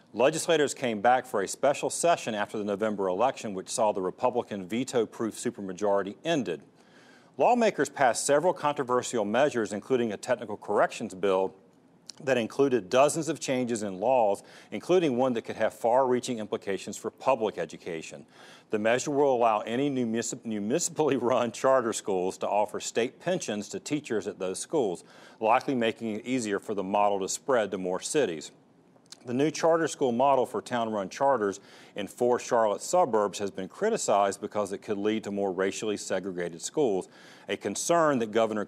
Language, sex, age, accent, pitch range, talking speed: English, male, 40-59, American, 100-130 Hz, 160 wpm